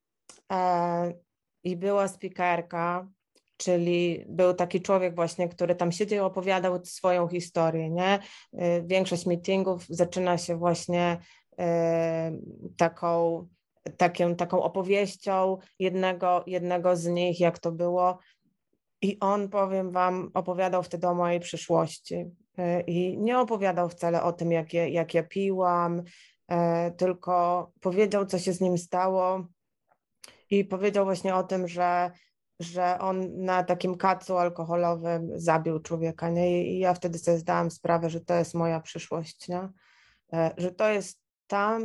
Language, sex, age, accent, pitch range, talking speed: Polish, female, 20-39, native, 175-190 Hz, 125 wpm